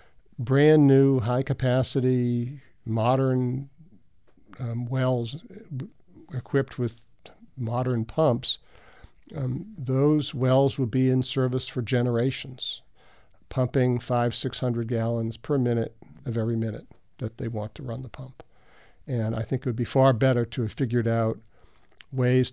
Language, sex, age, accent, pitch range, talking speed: English, male, 50-69, American, 115-135 Hz, 130 wpm